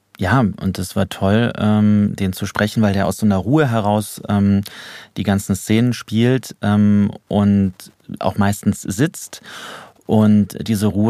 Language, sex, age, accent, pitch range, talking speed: German, male, 30-49, German, 95-110 Hz, 140 wpm